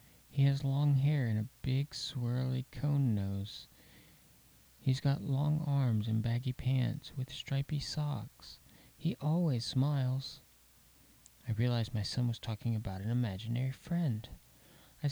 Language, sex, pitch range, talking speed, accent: English, male, 115-140 Hz, 135 wpm, American